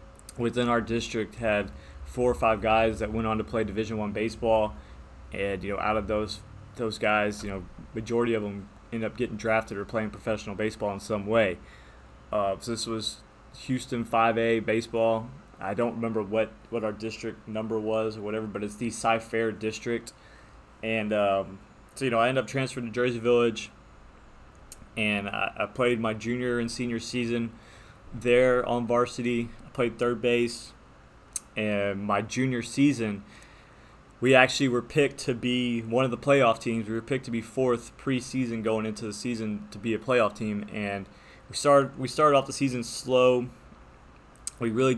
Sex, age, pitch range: male, 20-39, 105-120 Hz